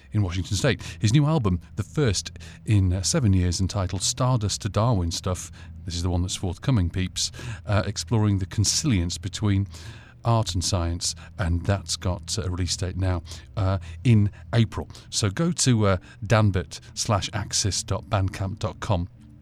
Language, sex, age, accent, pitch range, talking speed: English, male, 40-59, British, 90-110 Hz, 150 wpm